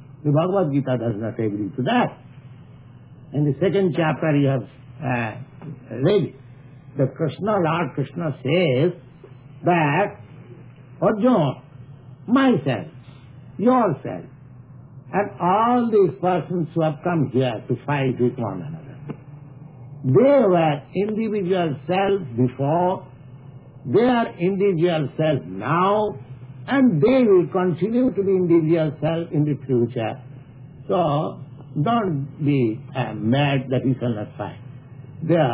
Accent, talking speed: Indian, 115 wpm